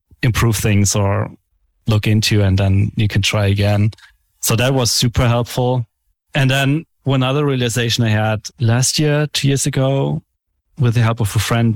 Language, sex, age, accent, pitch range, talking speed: English, male, 30-49, German, 100-125 Hz, 175 wpm